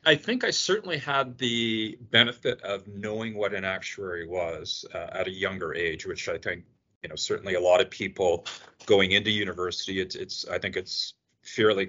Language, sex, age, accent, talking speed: English, male, 40-59, American, 185 wpm